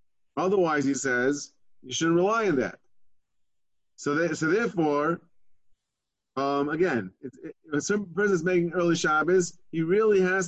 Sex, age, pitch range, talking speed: male, 30-49, 130-170 Hz, 150 wpm